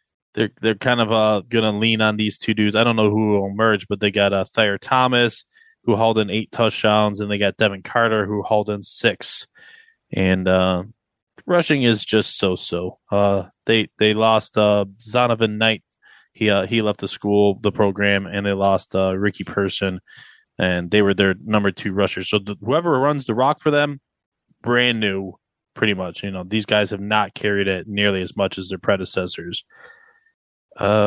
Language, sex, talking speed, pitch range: English, male, 195 wpm, 100-115 Hz